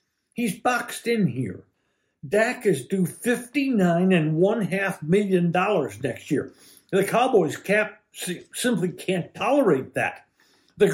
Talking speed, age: 125 wpm, 60-79